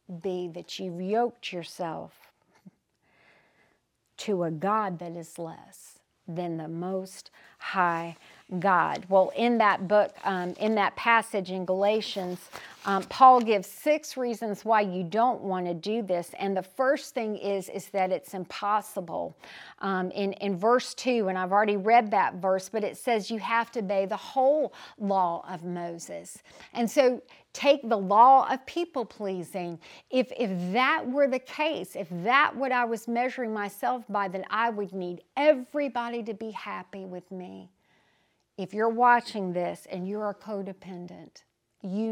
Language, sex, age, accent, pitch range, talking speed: English, female, 50-69, American, 185-230 Hz, 155 wpm